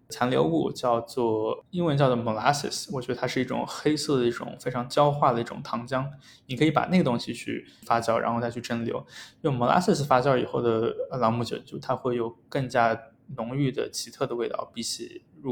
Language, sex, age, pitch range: Chinese, male, 20-39, 115-135 Hz